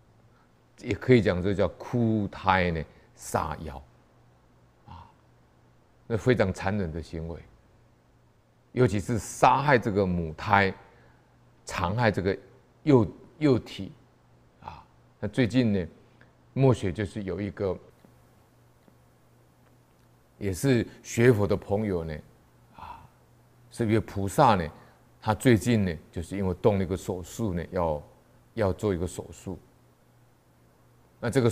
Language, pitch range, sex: Chinese, 90-120 Hz, male